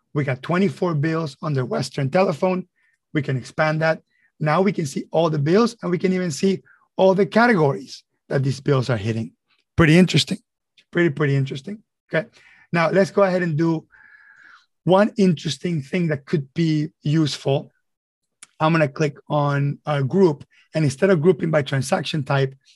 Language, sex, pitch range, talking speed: English, male, 145-185 Hz, 170 wpm